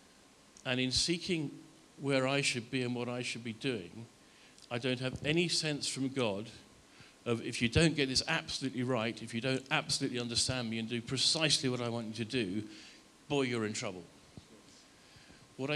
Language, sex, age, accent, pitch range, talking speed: English, male, 50-69, British, 120-140 Hz, 185 wpm